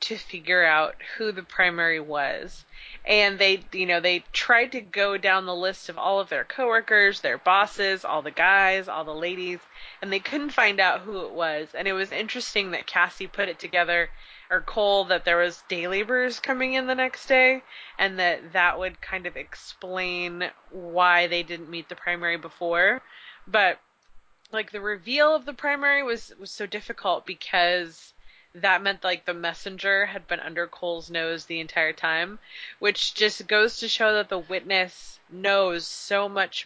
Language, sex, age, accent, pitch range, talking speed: English, female, 20-39, American, 170-200 Hz, 180 wpm